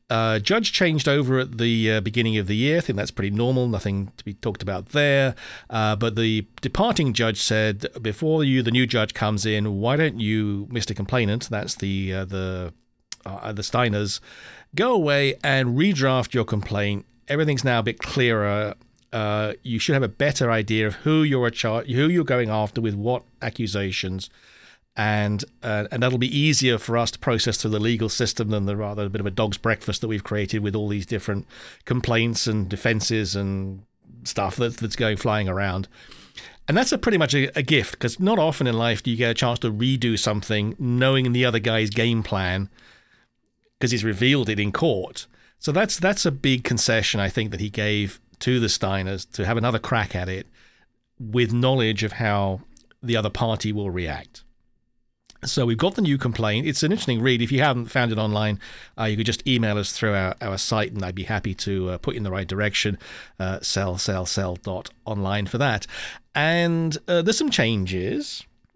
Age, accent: 40-59, British